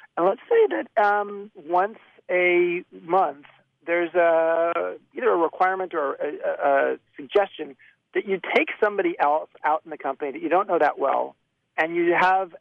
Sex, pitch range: male, 150-190 Hz